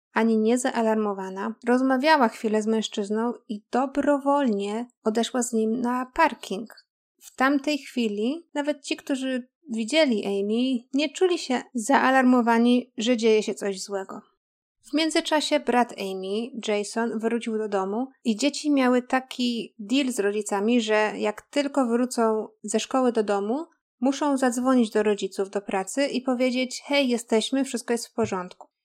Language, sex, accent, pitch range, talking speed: Polish, female, native, 220-265 Hz, 140 wpm